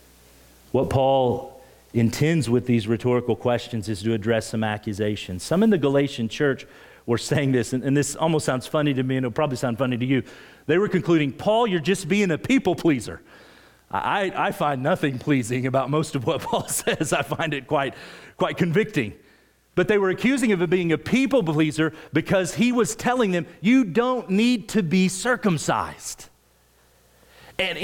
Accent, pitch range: American, 120-200 Hz